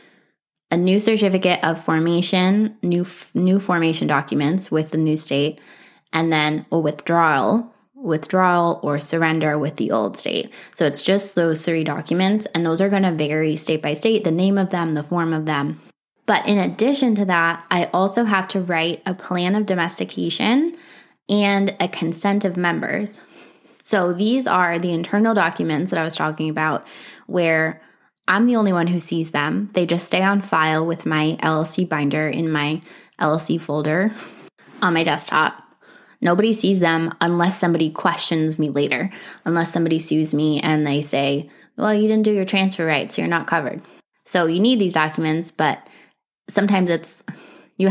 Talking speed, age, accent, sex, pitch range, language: 170 wpm, 20-39, American, female, 155-195 Hz, English